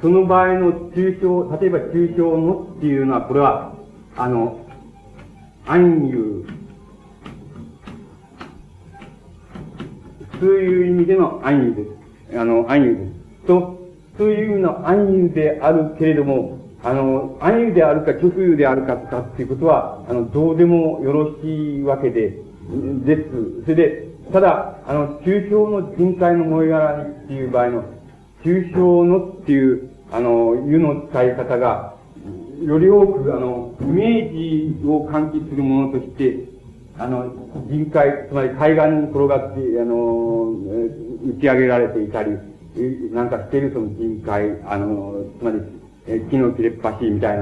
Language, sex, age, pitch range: Japanese, male, 50-69, 120-170 Hz